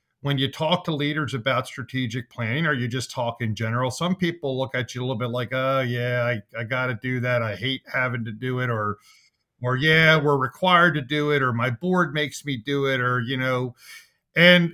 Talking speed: 225 wpm